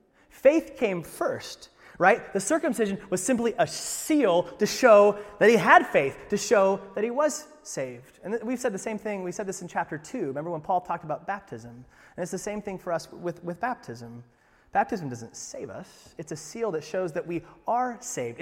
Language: English